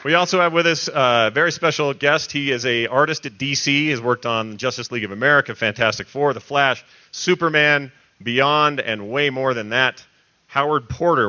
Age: 40-59